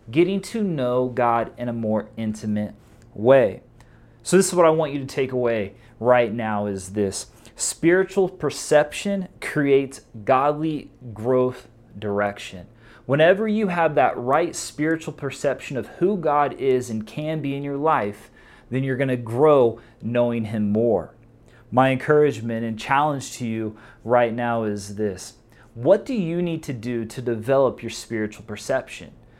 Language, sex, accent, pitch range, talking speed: English, male, American, 115-150 Hz, 155 wpm